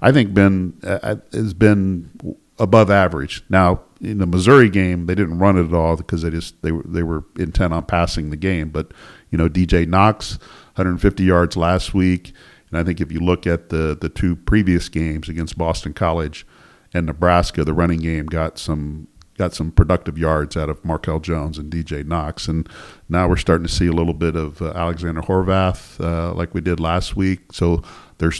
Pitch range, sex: 80-95 Hz, male